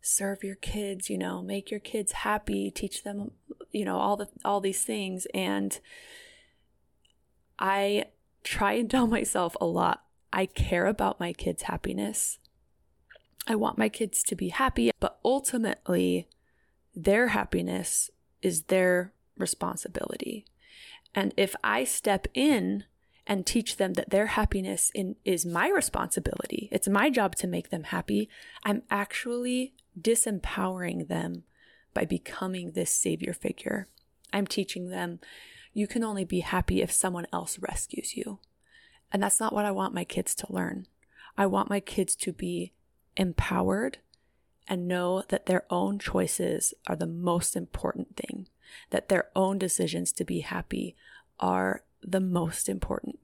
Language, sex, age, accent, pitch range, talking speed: English, female, 20-39, American, 170-220 Hz, 145 wpm